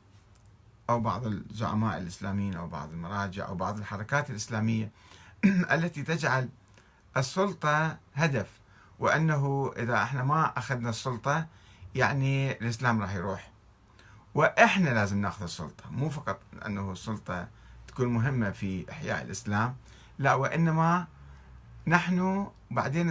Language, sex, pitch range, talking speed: Arabic, male, 100-140 Hz, 110 wpm